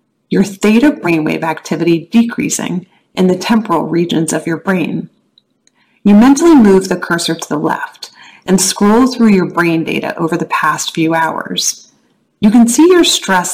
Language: English